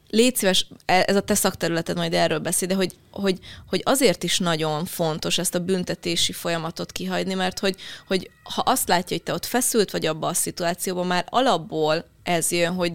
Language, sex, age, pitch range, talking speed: Hungarian, female, 20-39, 165-210 Hz, 185 wpm